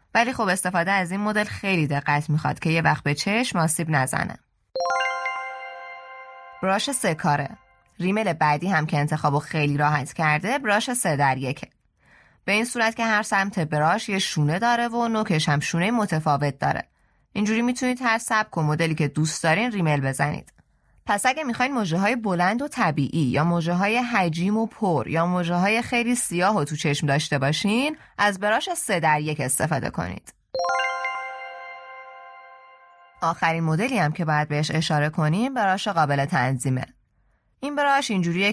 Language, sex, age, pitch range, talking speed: Persian, female, 20-39, 145-215 Hz, 160 wpm